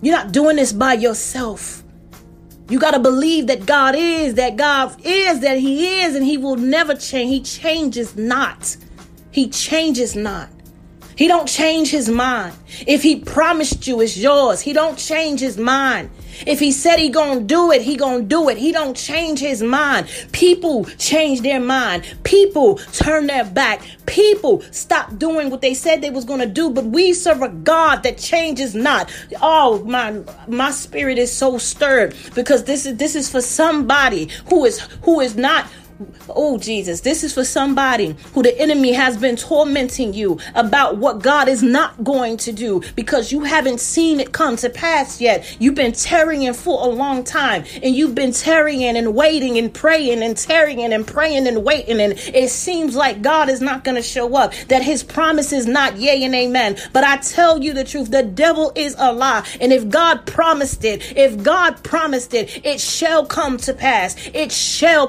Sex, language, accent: female, English, American